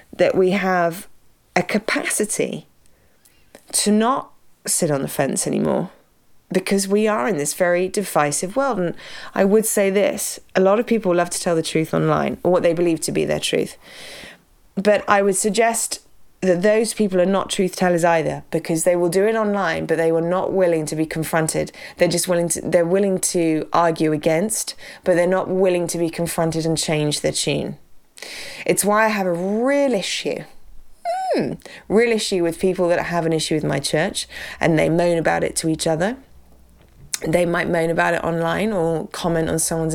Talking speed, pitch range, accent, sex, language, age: 185 wpm, 165-210 Hz, British, female, English, 20-39